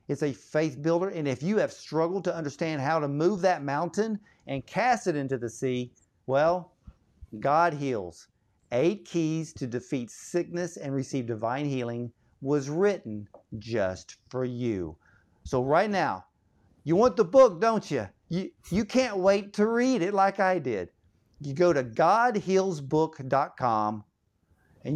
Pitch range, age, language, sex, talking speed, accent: 135-180 Hz, 50-69, English, male, 150 wpm, American